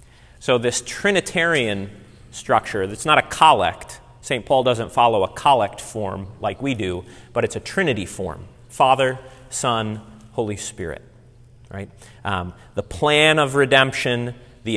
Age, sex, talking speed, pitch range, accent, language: 30-49, male, 140 wpm, 115-150 Hz, American, English